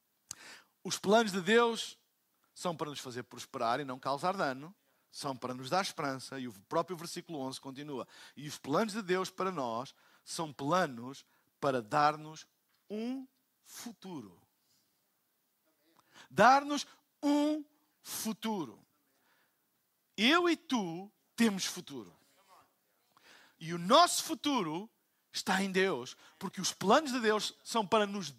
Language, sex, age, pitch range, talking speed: Portuguese, male, 50-69, 150-235 Hz, 125 wpm